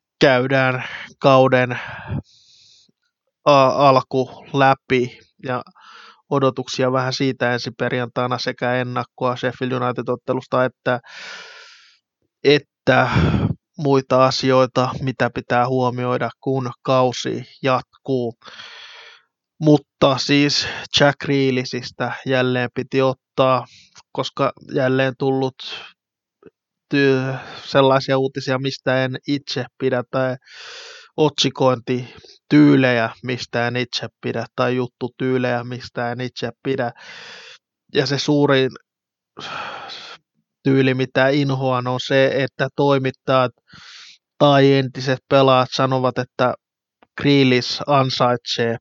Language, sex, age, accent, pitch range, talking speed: Finnish, male, 20-39, native, 125-135 Hz, 85 wpm